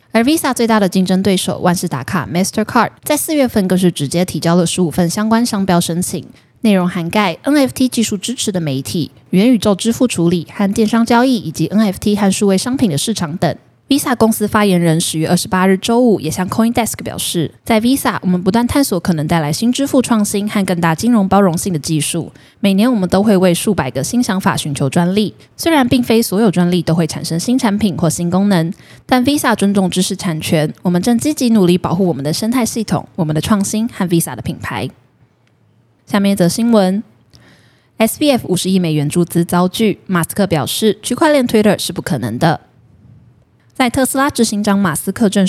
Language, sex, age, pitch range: Chinese, female, 10-29, 170-225 Hz